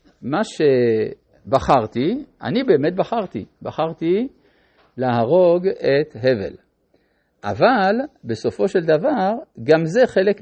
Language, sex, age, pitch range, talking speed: Hebrew, male, 50-69, 130-195 Hz, 90 wpm